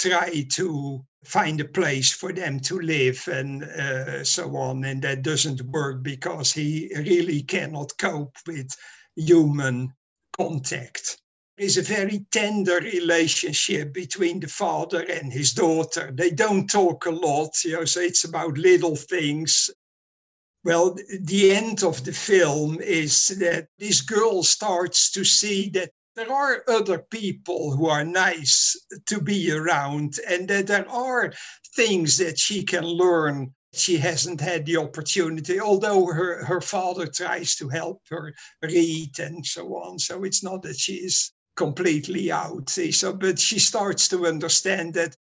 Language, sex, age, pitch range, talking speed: English, male, 60-79, 155-185 Hz, 150 wpm